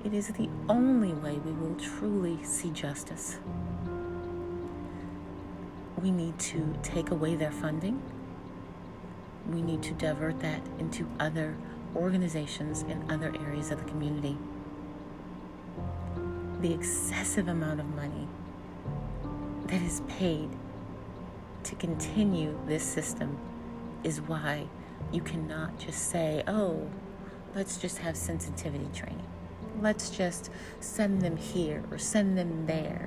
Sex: female